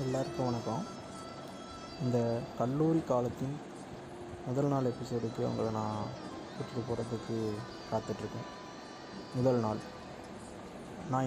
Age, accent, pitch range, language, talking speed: 20-39, native, 120-145 Hz, Tamil, 85 wpm